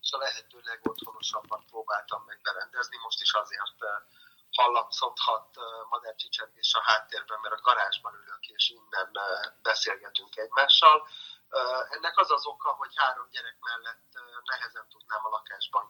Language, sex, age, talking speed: Hungarian, male, 30-49, 130 wpm